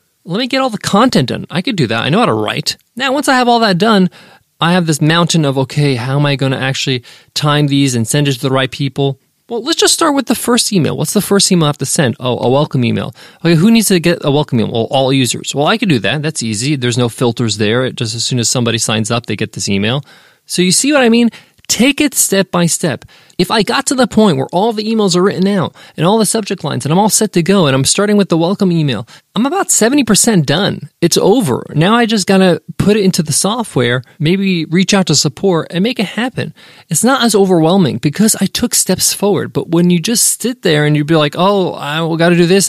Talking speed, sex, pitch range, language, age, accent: 265 wpm, male, 140-205 Hz, English, 20-39, American